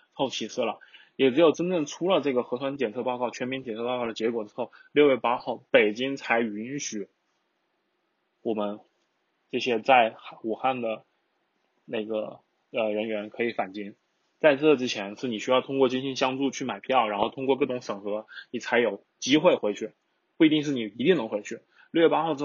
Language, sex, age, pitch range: Chinese, male, 20-39, 110-140 Hz